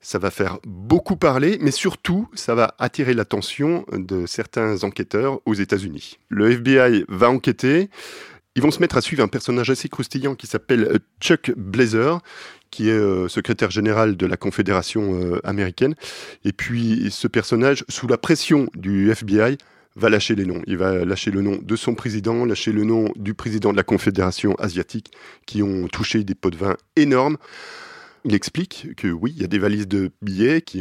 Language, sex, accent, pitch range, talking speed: French, male, French, 100-135 Hz, 180 wpm